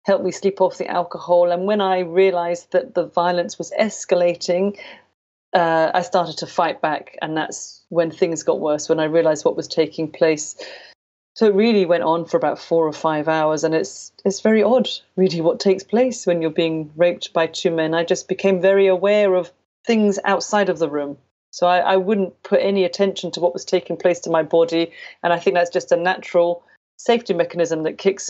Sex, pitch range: female, 170-195 Hz